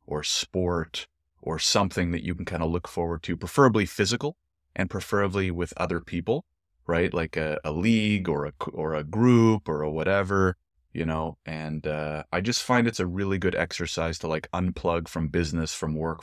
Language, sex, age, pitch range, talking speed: English, male, 30-49, 80-95 Hz, 190 wpm